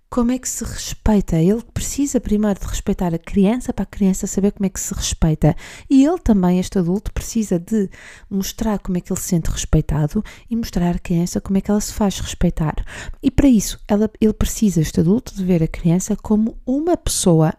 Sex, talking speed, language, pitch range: female, 210 wpm, Portuguese, 180-215 Hz